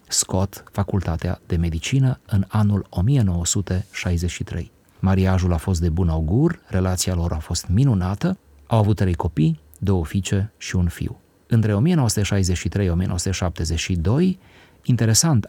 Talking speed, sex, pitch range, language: 125 wpm, male, 90-105 Hz, Romanian